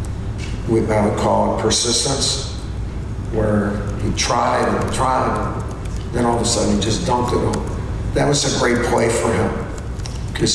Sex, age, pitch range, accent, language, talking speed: male, 50-69, 100-115 Hz, American, English, 160 wpm